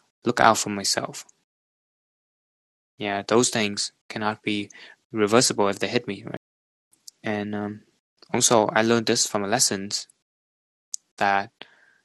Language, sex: English, male